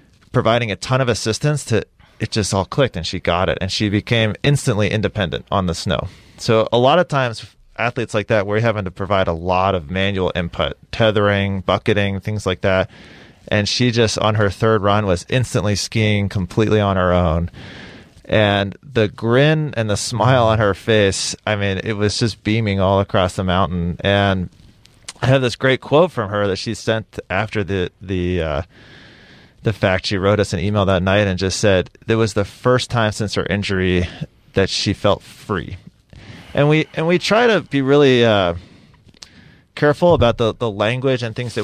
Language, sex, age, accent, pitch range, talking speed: English, male, 30-49, American, 95-120 Hz, 190 wpm